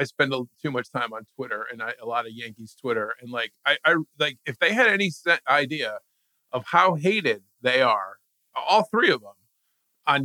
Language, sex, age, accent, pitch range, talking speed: English, male, 40-59, American, 120-165 Hz, 195 wpm